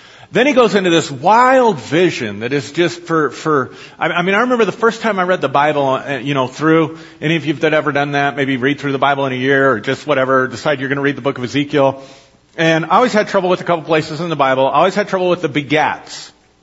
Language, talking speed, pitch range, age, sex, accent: English, 265 wpm, 140-180 Hz, 40-59, male, American